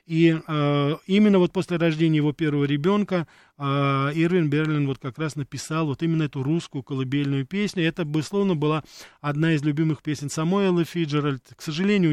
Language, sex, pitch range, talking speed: Russian, male, 140-165 Hz, 170 wpm